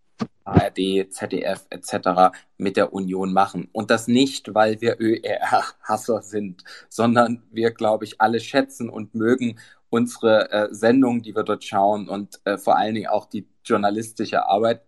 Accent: German